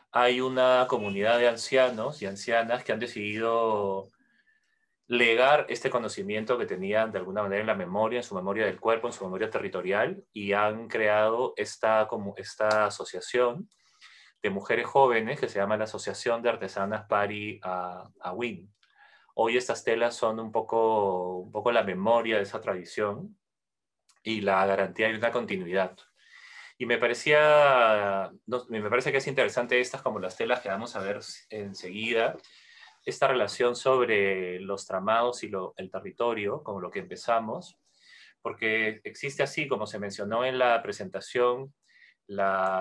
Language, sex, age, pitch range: Spanish, male, 30-49, 100-125 Hz